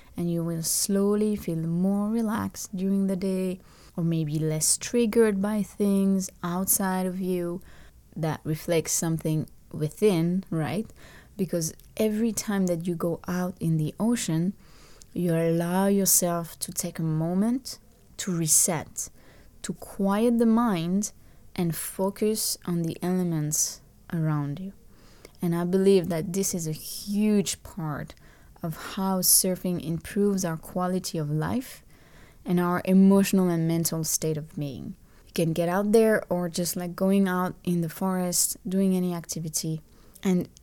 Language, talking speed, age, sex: English, 140 wpm, 20-39, female